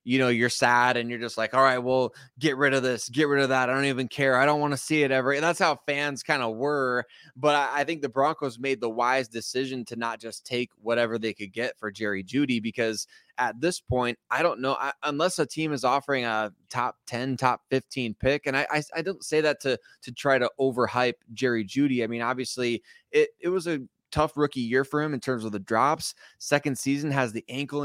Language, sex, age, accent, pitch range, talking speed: English, male, 20-39, American, 120-140 Hz, 245 wpm